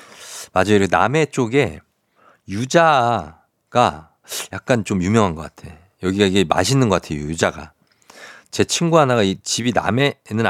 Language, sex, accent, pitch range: Korean, male, native, 95-130 Hz